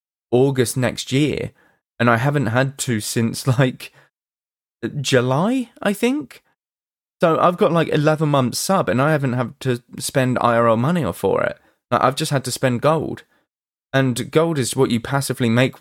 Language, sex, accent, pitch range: English, male, British, 115-145 Hz